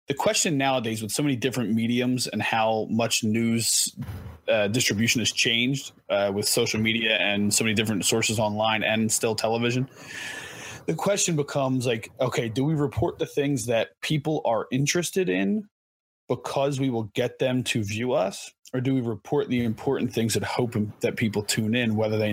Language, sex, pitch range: English, male, 110-140 Hz